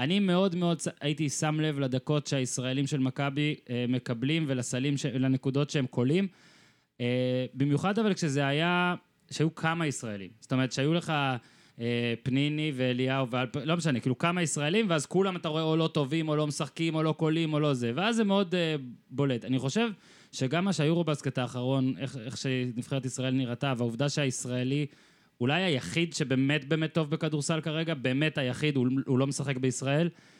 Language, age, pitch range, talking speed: Hebrew, 20-39, 130-175 Hz, 170 wpm